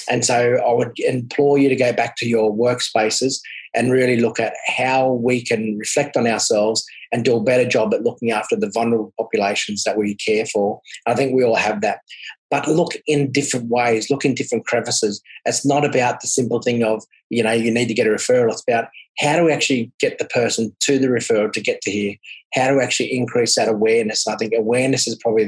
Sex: male